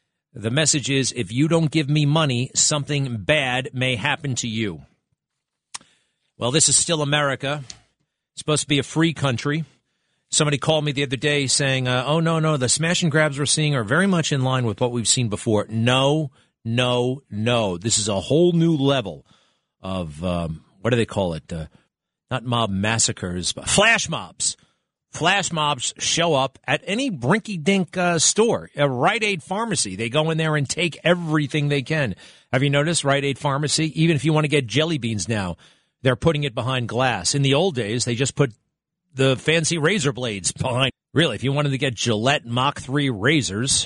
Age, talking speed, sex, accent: 40-59, 195 wpm, male, American